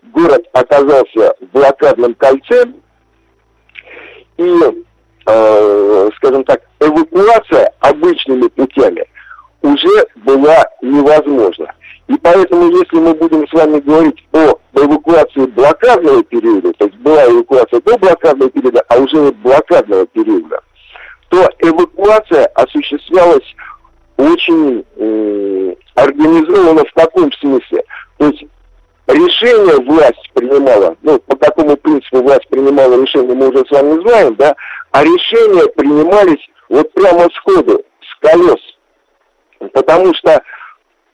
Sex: male